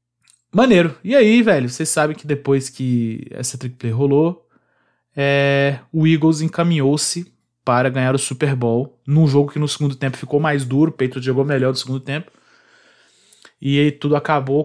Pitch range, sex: 135-160 Hz, male